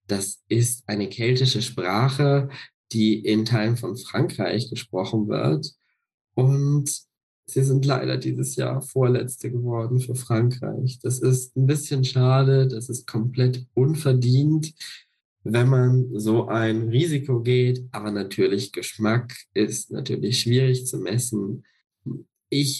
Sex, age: male, 20-39